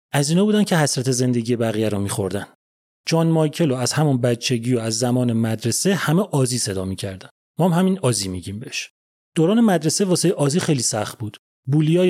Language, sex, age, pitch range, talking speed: Persian, male, 30-49, 115-160 Hz, 175 wpm